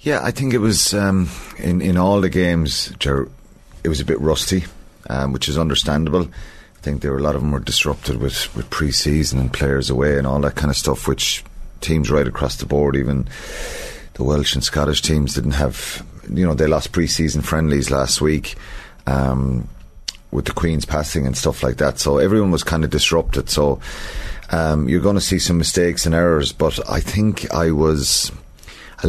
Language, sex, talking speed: English, male, 200 wpm